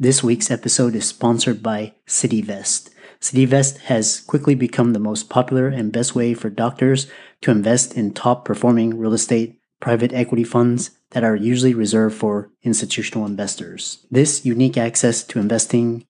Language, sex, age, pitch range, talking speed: English, male, 30-49, 110-125 Hz, 155 wpm